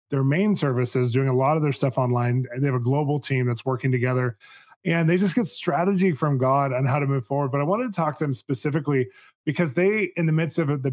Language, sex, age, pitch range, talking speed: English, male, 20-39, 135-155 Hz, 255 wpm